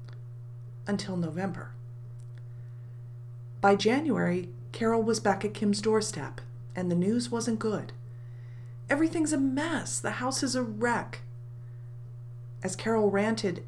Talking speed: 115 wpm